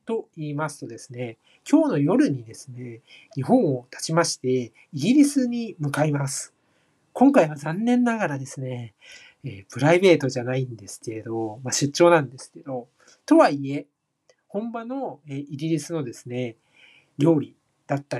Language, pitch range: Japanese, 130-185 Hz